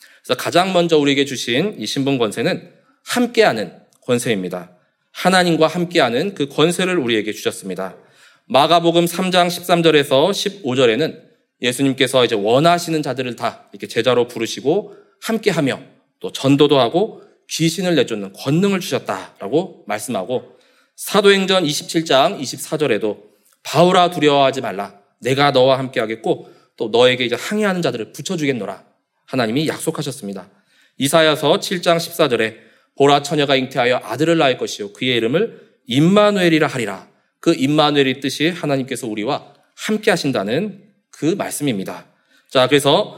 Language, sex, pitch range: Korean, male, 130-175 Hz